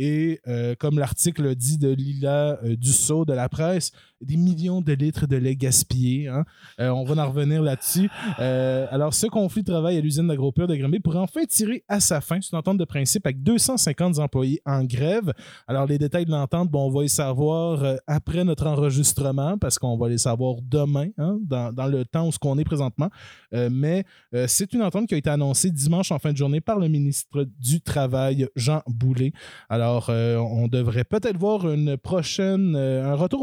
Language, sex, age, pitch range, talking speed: French, male, 20-39, 130-175 Hz, 205 wpm